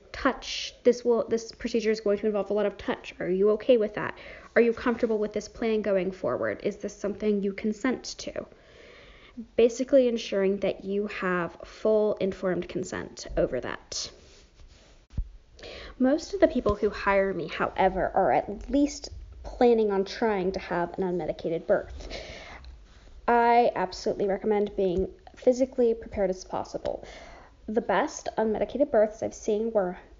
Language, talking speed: English, 150 wpm